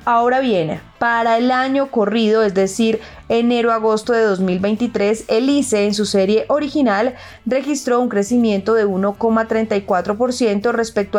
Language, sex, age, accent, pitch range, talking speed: Spanish, female, 20-39, Colombian, 200-245 Hz, 125 wpm